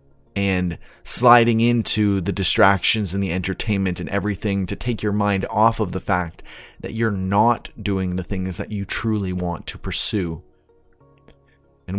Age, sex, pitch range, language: 30-49, male, 90-110 Hz, English